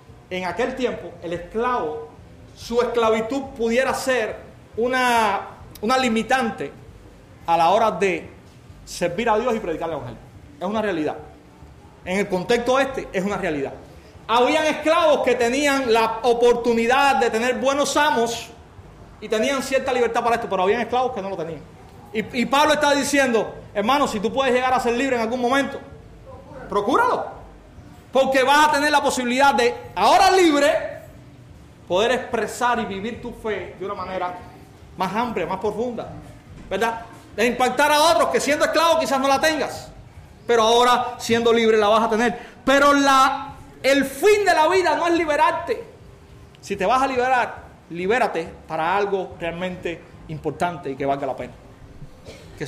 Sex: male